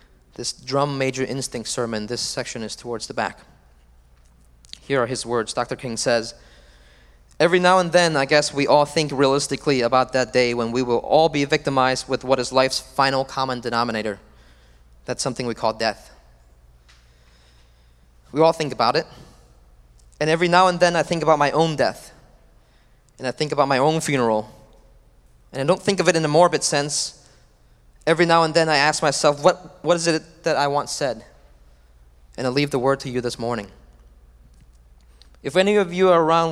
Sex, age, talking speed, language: male, 20-39, 185 wpm, English